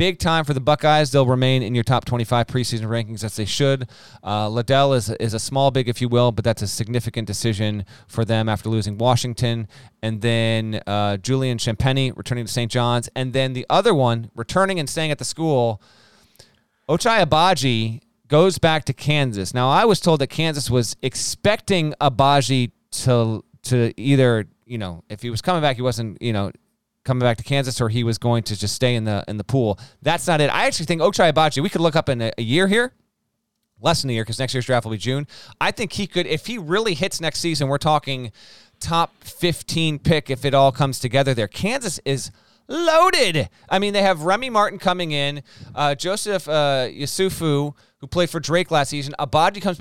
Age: 30-49